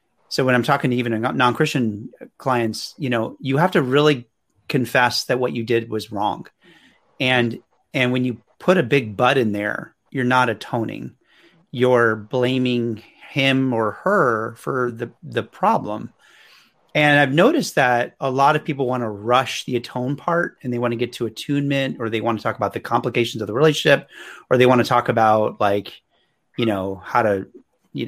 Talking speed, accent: 185 wpm, American